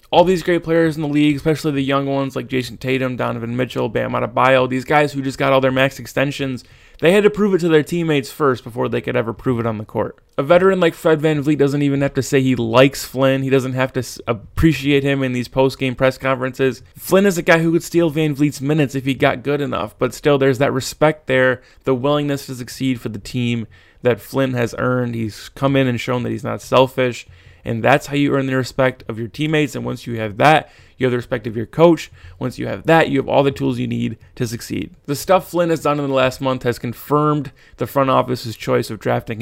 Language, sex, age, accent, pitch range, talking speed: English, male, 20-39, American, 125-145 Hz, 245 wpm